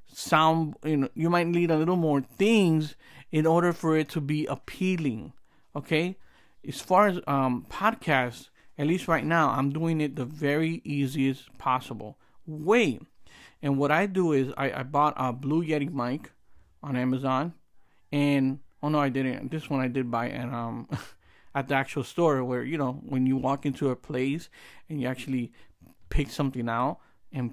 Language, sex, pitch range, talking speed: English, male, 130-160 Hz, 175 wpm